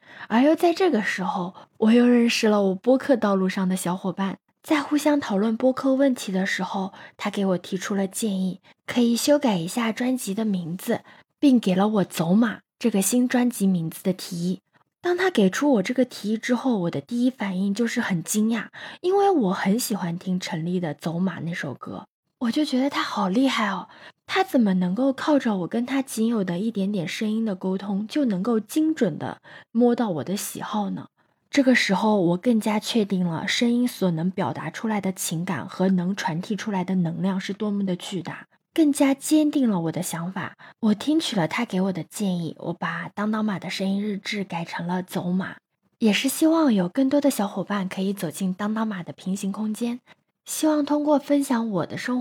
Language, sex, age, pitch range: Chinese, female, 20-39, 185-250 Hz